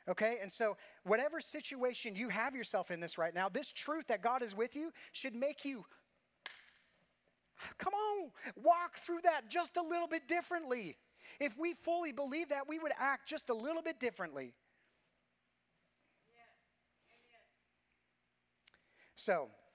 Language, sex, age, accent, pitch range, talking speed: English, male, 30-49, American, 155-215 Hz, 140 wpm